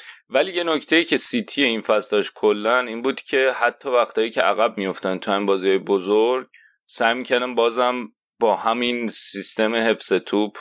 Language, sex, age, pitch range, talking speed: Persian, male, 30-49, 100-130 Hz, 165 wpm